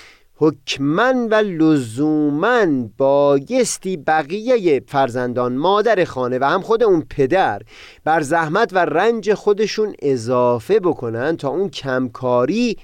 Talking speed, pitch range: 105 wpm, 130-200 Hz